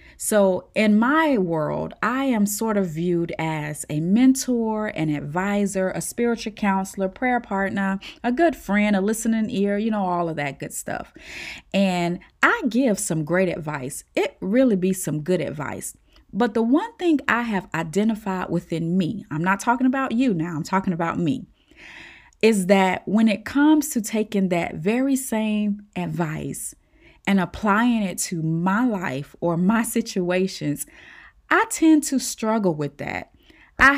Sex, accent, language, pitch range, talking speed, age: female, American, English, 175-230 Hz, 160 wpm, 30-49